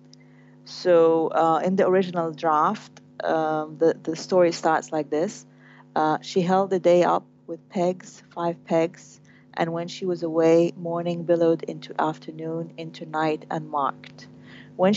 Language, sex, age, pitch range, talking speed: English, female, 30-49, 160-180 Hz, 150 wpm